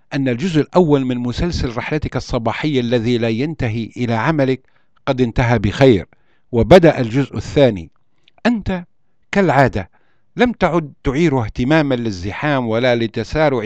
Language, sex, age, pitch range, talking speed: Arabic, male, 60-79, 115-155 Hz, 120 wpm